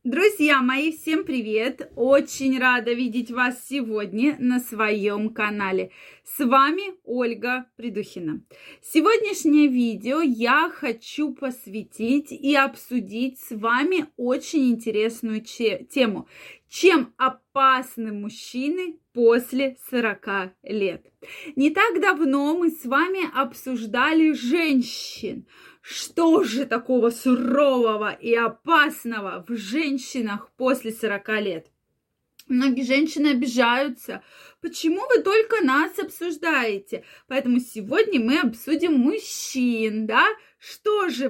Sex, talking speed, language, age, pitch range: female, 100 wpm, Russian, 20-39, 230-305 Hz